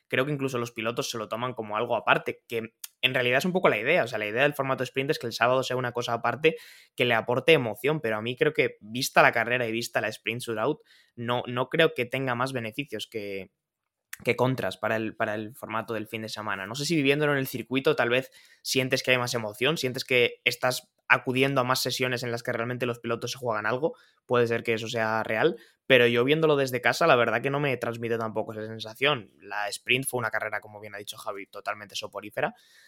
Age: 20-39